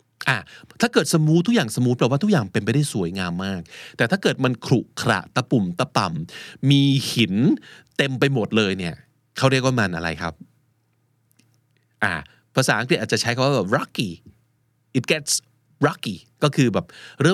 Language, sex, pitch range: Thai, male, 110-140 Hz